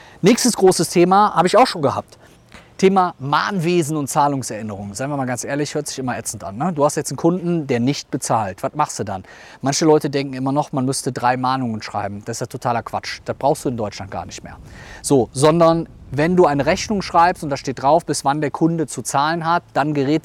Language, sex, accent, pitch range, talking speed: German, male, German, 130-170 Hz, 230 wpm